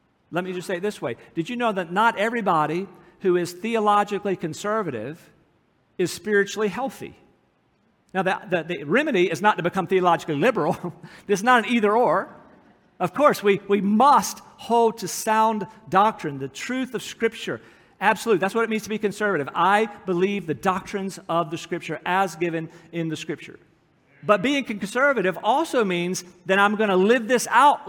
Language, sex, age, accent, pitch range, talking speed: English, male, 50-69, American, 180-225 Hz, 170 wpm